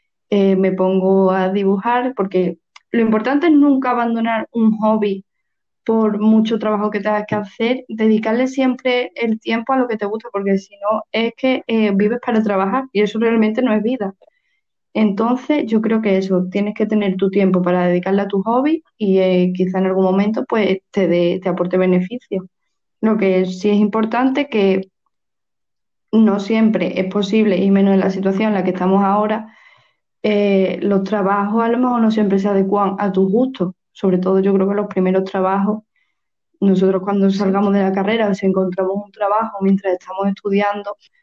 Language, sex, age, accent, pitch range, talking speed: Spanish, female, 20-39, Spanish, 190-225 Hz, 180 wpm